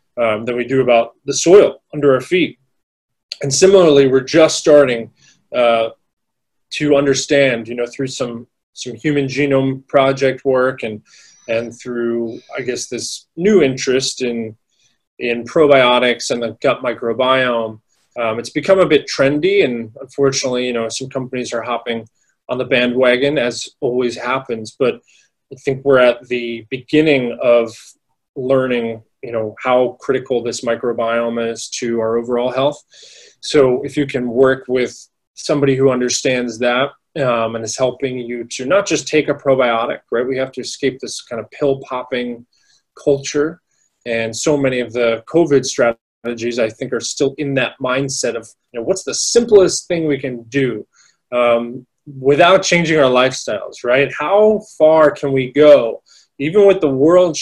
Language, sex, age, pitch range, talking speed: English, male, 20-39, 120-140 Hz, 160 wpm